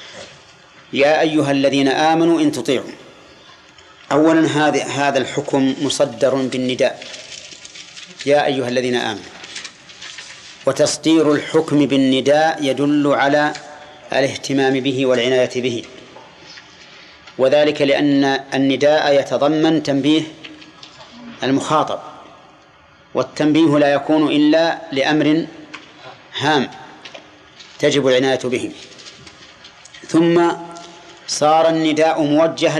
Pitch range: 135-160 Hz